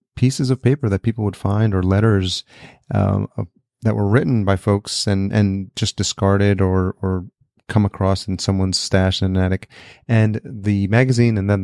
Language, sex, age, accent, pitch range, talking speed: English, male, 30-49, American, 95-110 Hz, 175 wpm